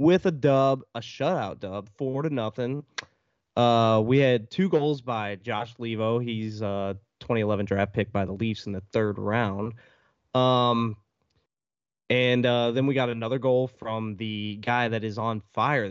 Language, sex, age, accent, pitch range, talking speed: English, male, 20-39, American, 105-125 Hz, 165 wpm